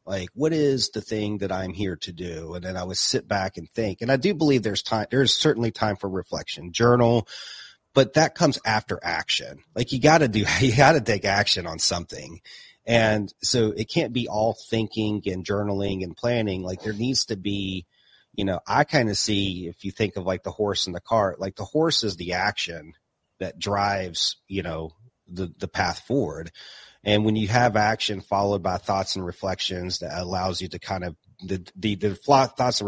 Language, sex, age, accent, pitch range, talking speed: English, male, 30-49, American, 95-115 Hz, 210 wpm